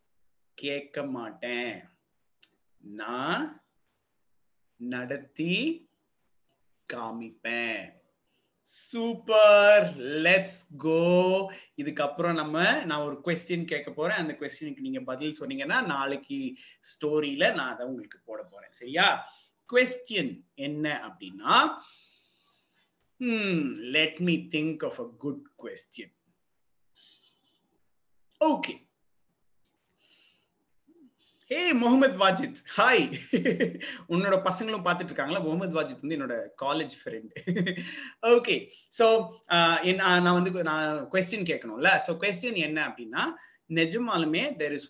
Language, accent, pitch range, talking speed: Tamil, native, 150-225 Hz, 45 wpm